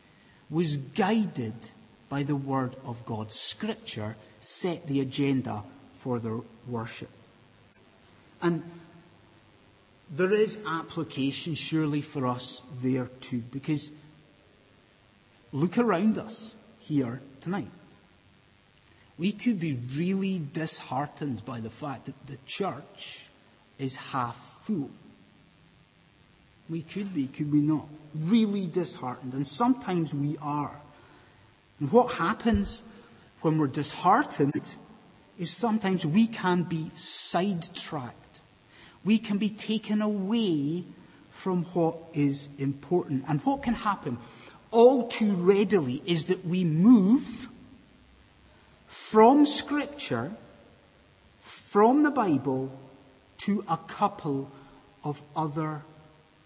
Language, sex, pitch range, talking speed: English, male, 135-200 Hz, 100 wpm